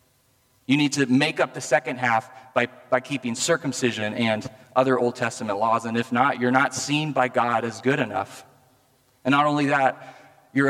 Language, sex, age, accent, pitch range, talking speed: English, male, 30-49, American, 120-130 Hz, 185 wpm